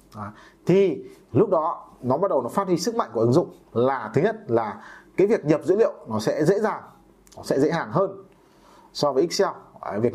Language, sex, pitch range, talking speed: Vietnamese, male, 150-215 Hz, 215 wpm